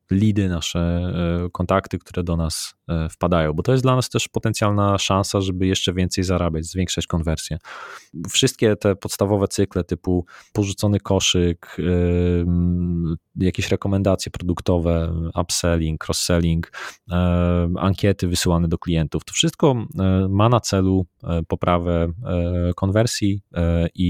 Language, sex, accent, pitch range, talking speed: Polish, male, native, 85-105 Hz, 110 wpm